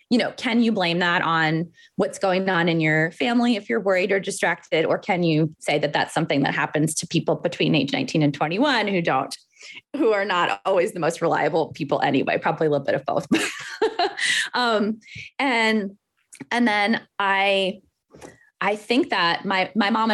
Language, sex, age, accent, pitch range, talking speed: English, female, 20-39, American, 170-230 Hz, 185 wpm